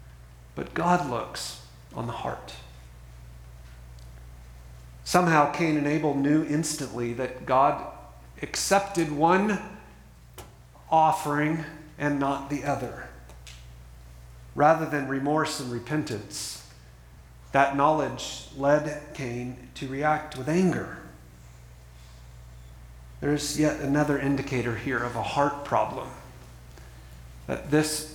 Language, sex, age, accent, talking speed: English, male, 50-69, American, 95 wpm